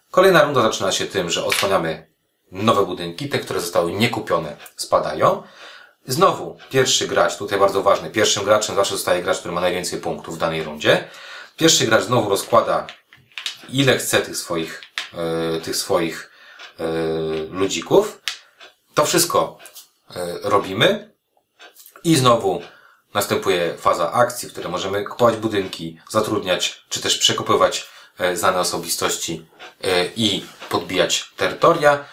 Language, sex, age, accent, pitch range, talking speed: Polish, male, 30-49, native, 90-125 Hz, 120 wpm